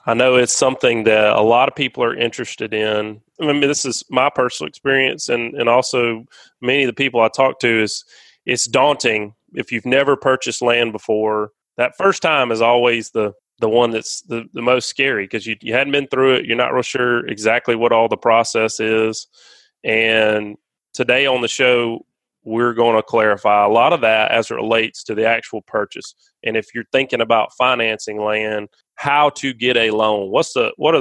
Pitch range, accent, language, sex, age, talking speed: 110-125 Hz, American, English, male, 30-49, 200 wpm